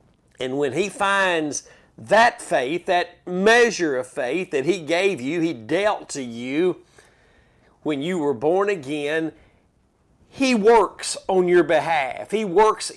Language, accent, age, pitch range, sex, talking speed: English, American, 50-69, 155-210 Hz, male, 140 wpm